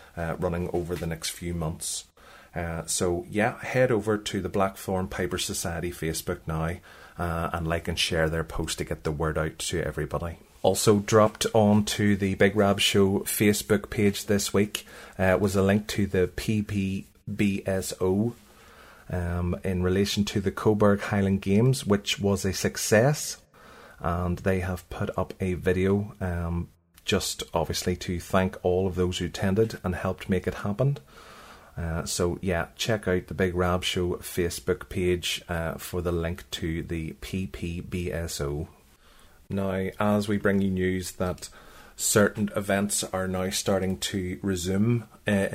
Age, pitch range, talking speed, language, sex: 30-49, 90-100 Hz, 155 wpm, English, male